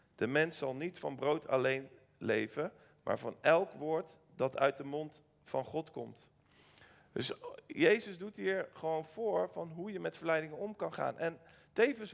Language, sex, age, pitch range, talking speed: Dutch, male, 40-59, 155-195 Hz, 175 wpm